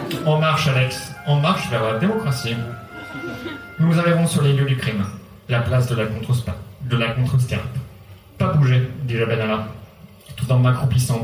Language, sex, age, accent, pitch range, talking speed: French, male, 30-49, French, 110-145 Hz, 160 wpm